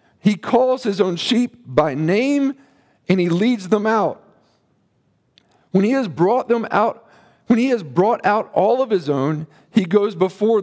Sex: male